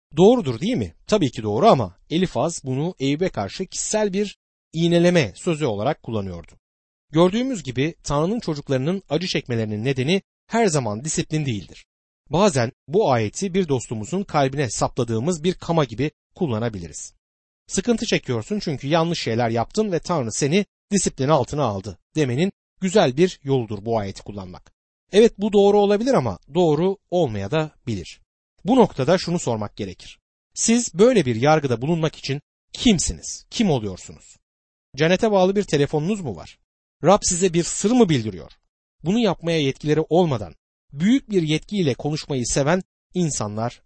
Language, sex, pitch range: Turkish, male, 115-185 Hz